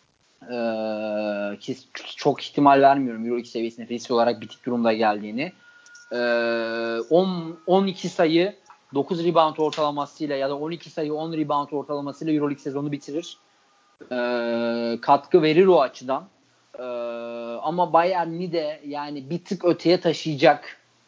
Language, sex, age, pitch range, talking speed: Turkish, male, 30-49, 130-165 Hz, 120 wpm